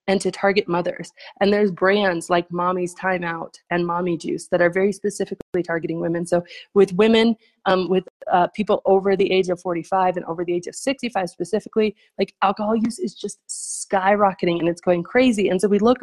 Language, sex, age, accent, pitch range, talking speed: English, female, 30-49, American, 175-210 Hz, 195 wpm